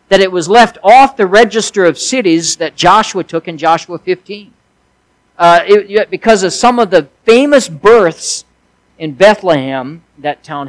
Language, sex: English, male